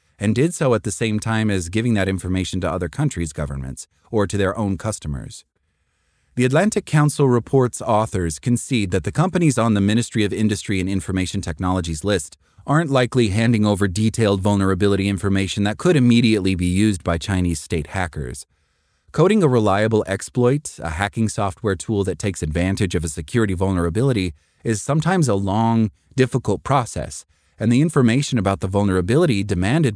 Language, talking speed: English, 165 wpm